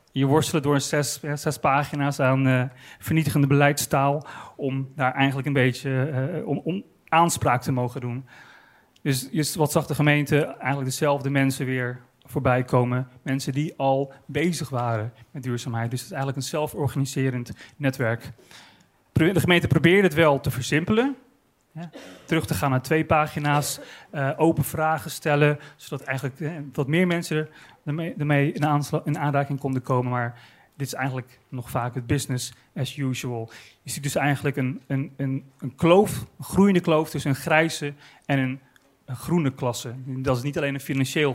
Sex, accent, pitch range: male, Dutch, 130-155 Hz